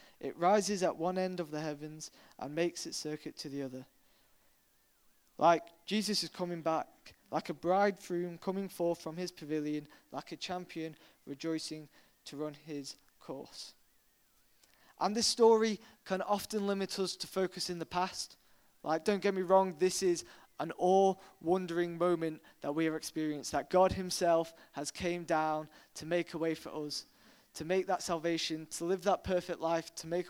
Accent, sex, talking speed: British, male, 170 wpm